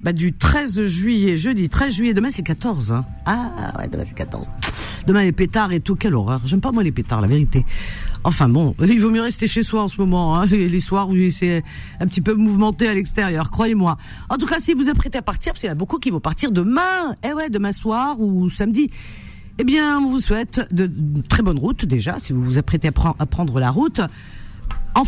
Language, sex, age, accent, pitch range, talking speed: French, female, 50-69, French, 160-255 Hz, 245 wpm